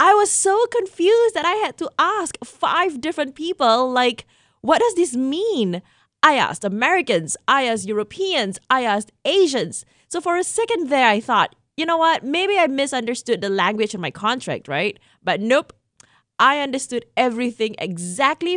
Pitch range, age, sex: 210-310 Hz, 20-39, female